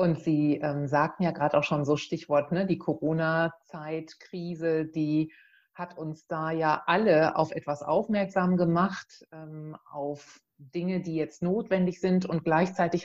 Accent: German